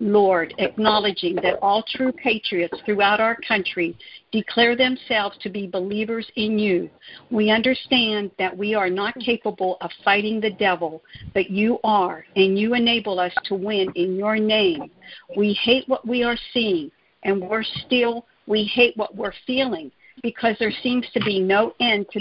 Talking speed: 165 wpm